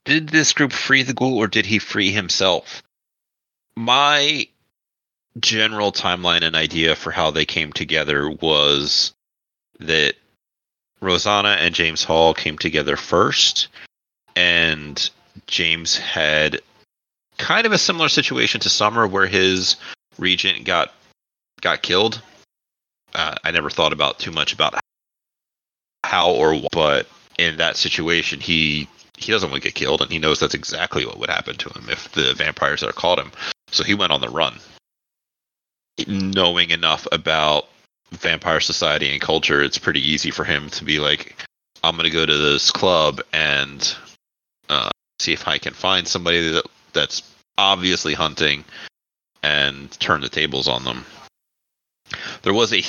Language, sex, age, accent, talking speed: English, male, 30-49, American, 150 wpm